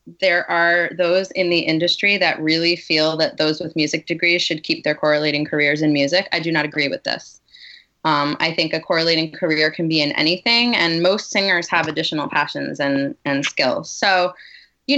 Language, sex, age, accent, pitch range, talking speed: English, female, 20-39, American, 155-180 Hz, 190 wpm